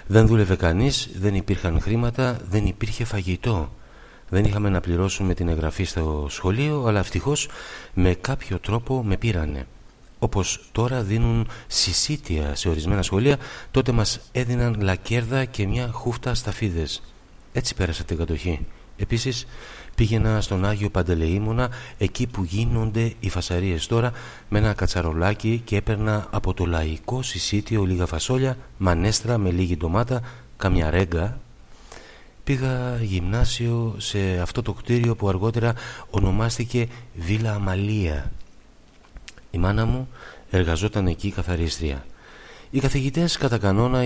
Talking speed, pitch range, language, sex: 125 wpm, 90-120 Hz, Greek, male